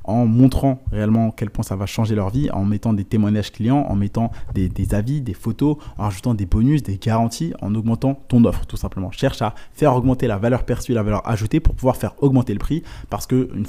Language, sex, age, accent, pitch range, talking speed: French, male, 20-39, French, 105-125 Hz, 230 wpm